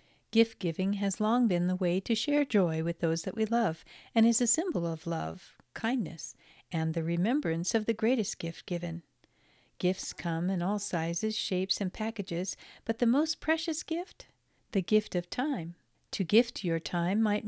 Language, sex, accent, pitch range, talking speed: English, female, American, 180-235 Hz, 175 wpm